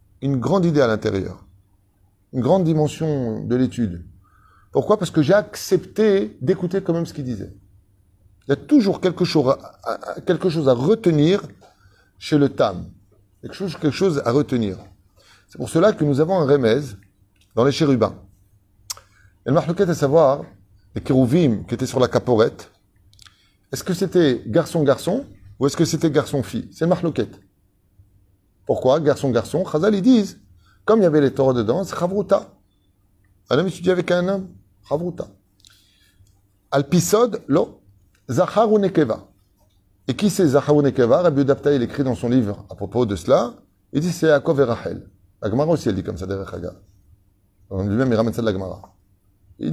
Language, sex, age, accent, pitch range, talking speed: French, male, 30-49, French, 95-155 Hz, 175 wpm